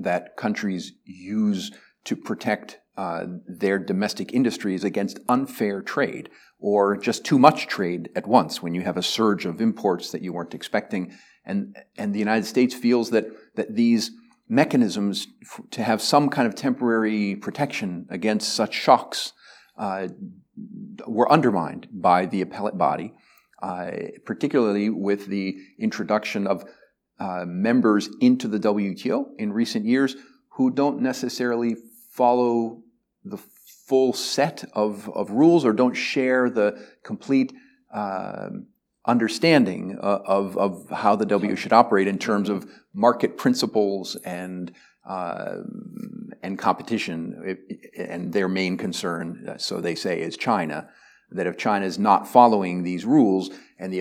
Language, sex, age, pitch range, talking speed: Ukrainian, male, 50-69, 100-145 Hz, 135 wpm